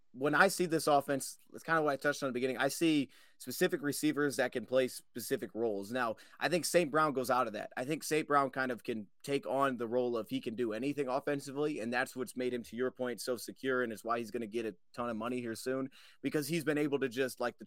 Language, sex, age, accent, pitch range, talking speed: English, male, 30-49, American, 125-155 Hz, 270 wpm